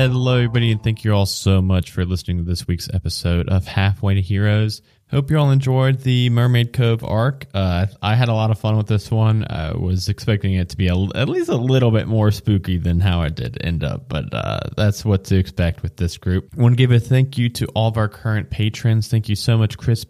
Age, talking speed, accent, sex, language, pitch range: 20-39, 250 wpm, American, male, English, 95-125 Hz